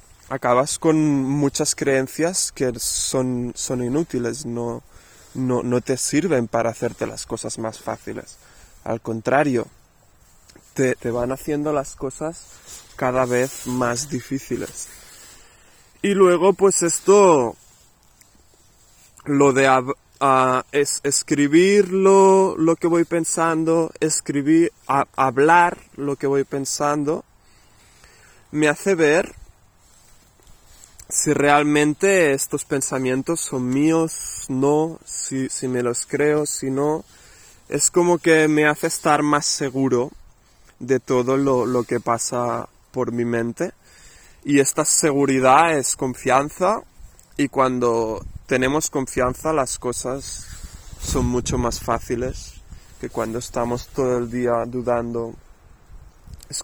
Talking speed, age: 115 wpm, 20-39